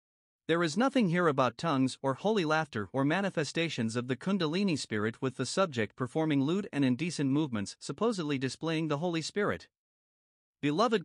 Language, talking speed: English, 155 wpm